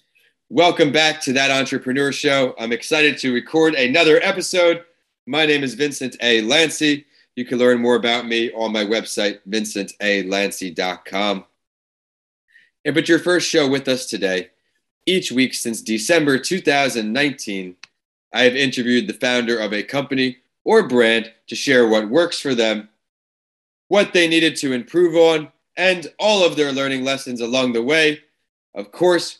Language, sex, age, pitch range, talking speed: English, male, 30-49, 110-145 Hz, 150 wpm